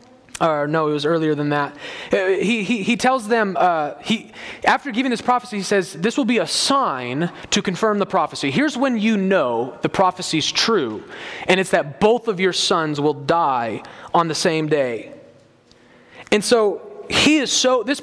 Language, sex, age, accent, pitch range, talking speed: English, male, 30-49, American, 160-225 Hz, 185 wpm